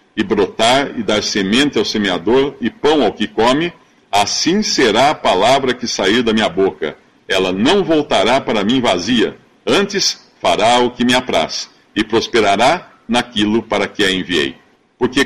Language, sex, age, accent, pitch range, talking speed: Portuguese, male, 50-69, Brazilian, 110-185 Hz, 160 wpm